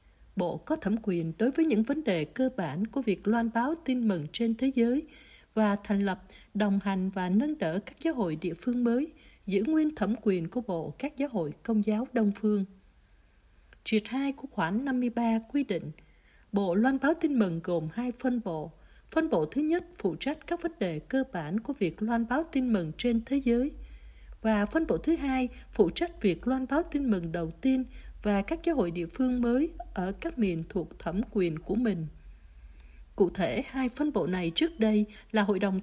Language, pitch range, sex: Vietnamese, 190-260 Hz, female